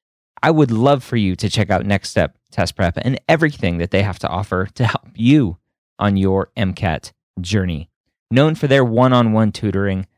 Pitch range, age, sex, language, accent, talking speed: 95-120 Hz, 20-39, male, English, American, 185 wpm